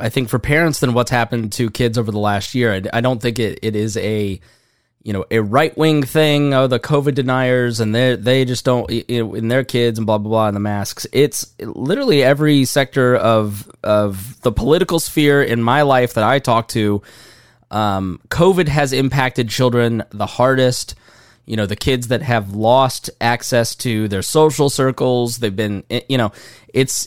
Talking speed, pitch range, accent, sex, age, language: 195 wpm, 110-135 Hz, American, male, 20-39, English